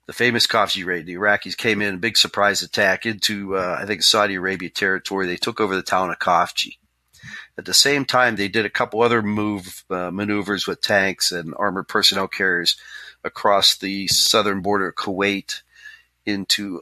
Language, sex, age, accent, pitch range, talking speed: English, male, 40-59, American, 90-105 Hz, 180 wpm